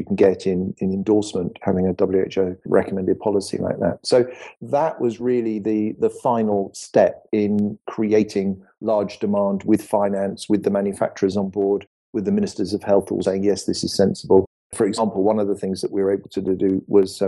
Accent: British